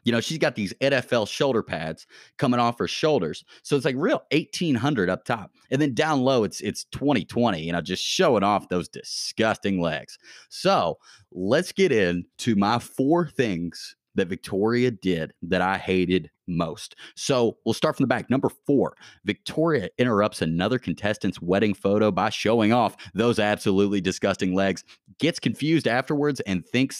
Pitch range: 95-140 Hz